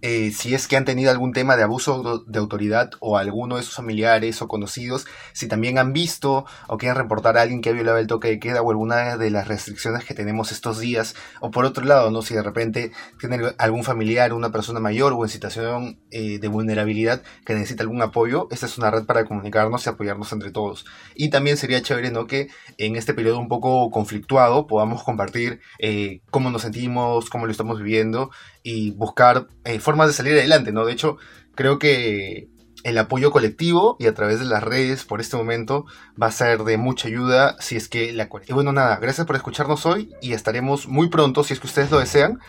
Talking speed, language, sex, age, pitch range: 215 wpm, Spanish, male, 20-39, 110-130 Hz